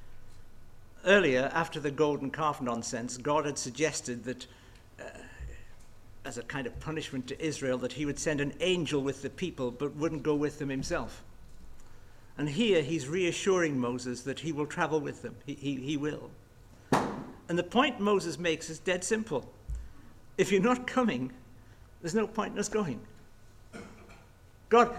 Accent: British